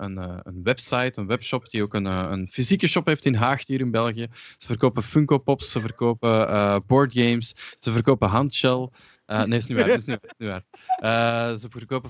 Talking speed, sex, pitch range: 220 wpm, male, 105-145 Hz